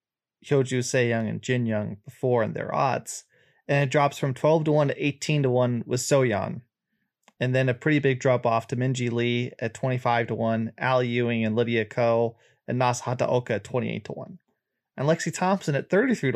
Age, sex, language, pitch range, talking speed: 20-39, male, English, 125-150 Hz, 195 wpm